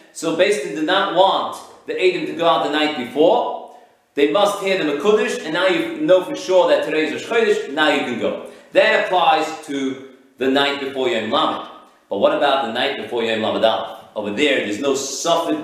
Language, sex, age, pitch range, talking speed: English, male, 40-59, 130-175 Hz, 215 wpm